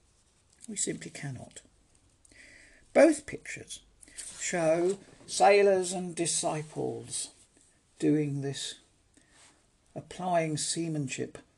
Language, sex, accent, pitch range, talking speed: English, male, British, 125-180 Hz, 65 wpm